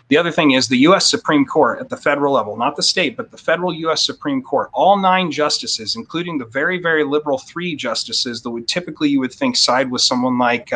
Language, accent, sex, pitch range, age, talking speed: English, American, male, 135-190 Hz, 30-49, 230 wpm